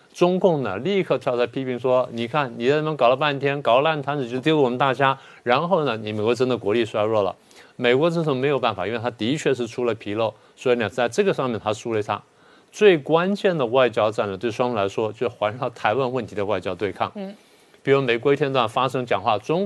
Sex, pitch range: male, 115-150 Hz